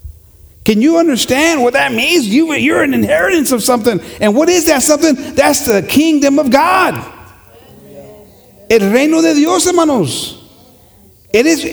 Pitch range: 165-275 Hz